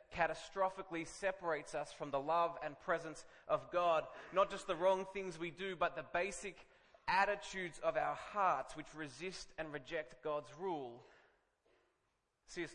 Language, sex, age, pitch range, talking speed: English, male, 20-39, 155-190 Hz, 145 wpm